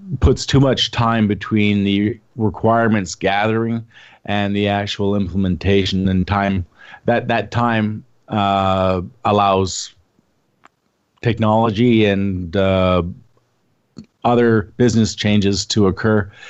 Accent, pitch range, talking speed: American, 95-110 Hz, 100 wpm